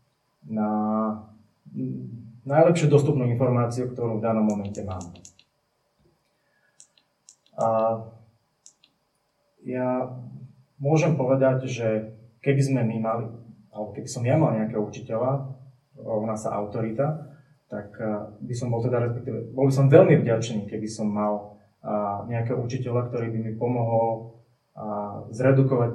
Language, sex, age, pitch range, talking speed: Slovak, male, 20-39, 110-135 Hz, 110 wpm